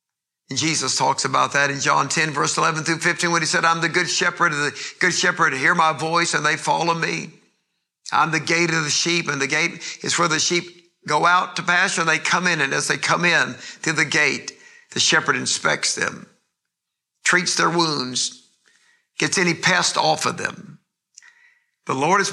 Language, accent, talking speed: English, American, 200 wpm